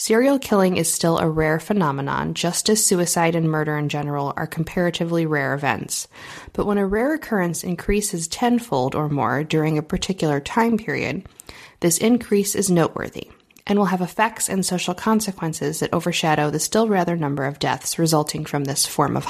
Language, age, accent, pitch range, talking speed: English, 20-39, American, 160-205 Hz, 175 wpm